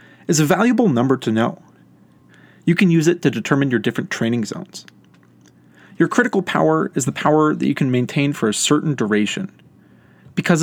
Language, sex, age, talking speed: English, male, 30-49, 175 wpm